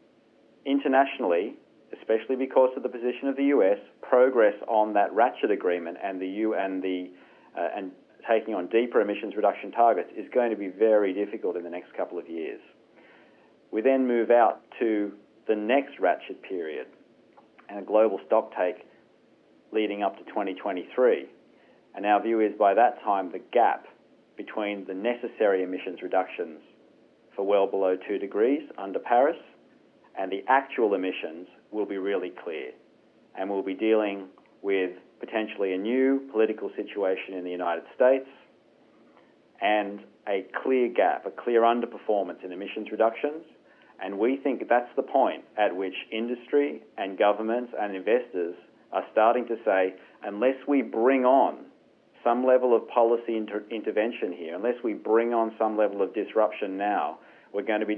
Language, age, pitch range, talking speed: English, 40-59, 100-125 Hz, 155 wpm